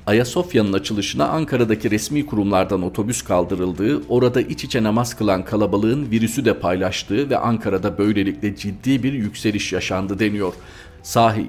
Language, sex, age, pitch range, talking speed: Turkish, male, 50-69, 95-120 Hz, 130 wpm